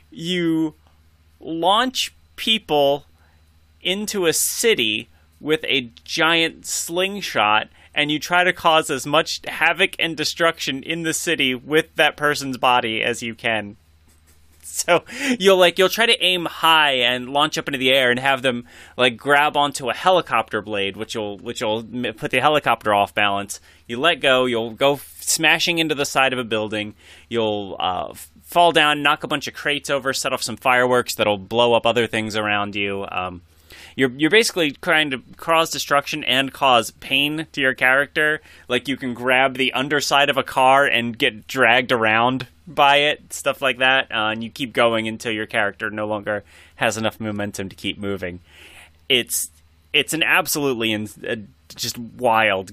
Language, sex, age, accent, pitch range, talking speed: English, male, 30-49, American, 105-150 Hz, 175 wpm